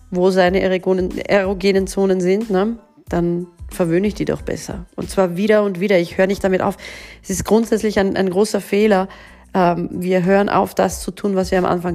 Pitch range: 190-220 Hz